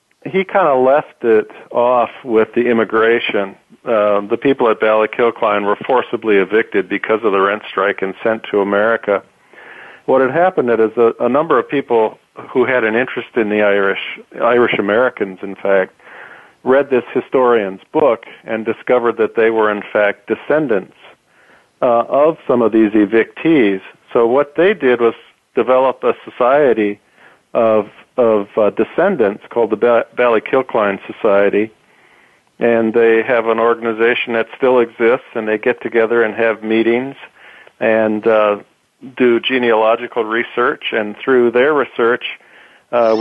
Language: English